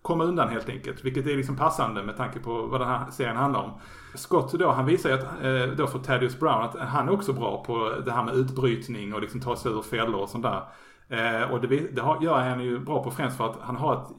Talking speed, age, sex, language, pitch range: 255 wpm, 30-49, male, English, 115-135 Hz